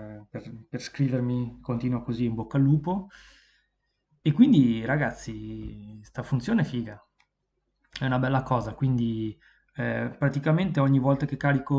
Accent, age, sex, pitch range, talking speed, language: native, 20-39, male, 115-140 Hz, 135 wpm, Italian